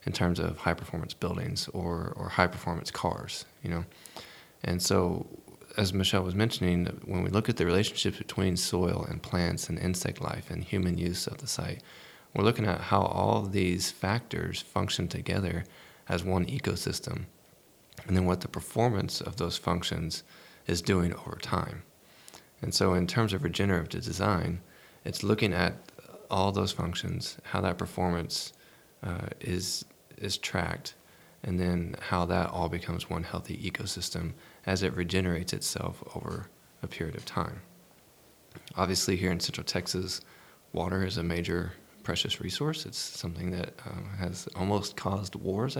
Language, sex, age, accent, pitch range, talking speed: English, male, 20-39, American, 90-105 Hz, 155 wpm